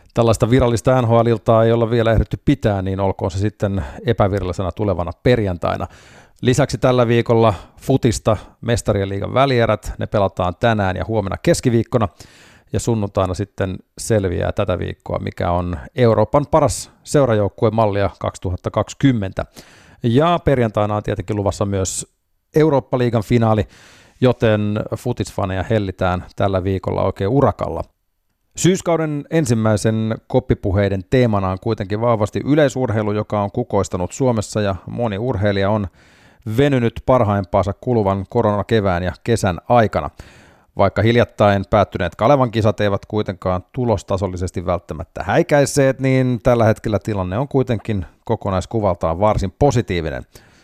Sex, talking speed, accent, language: male, 115 wpm, native, Finnish